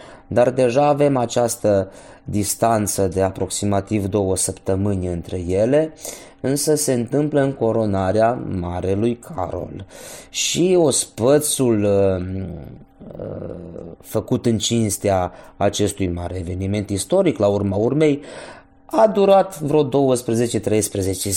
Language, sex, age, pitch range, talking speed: Romanian, male, 20-39, 100-125 Hz, 100 wpm